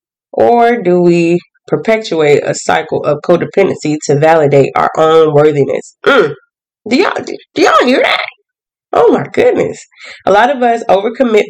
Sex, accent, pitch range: female, American, 155-220 Hz